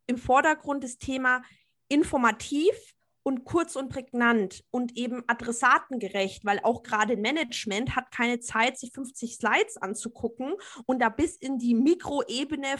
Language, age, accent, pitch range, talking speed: German, 20-39, German, 230-290 Hz, 135 wpm